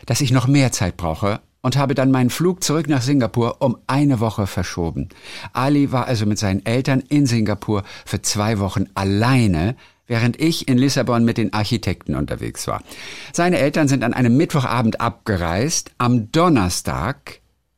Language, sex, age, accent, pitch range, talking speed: German, male, 50-69, German, 90-135 Hz, 160 wpm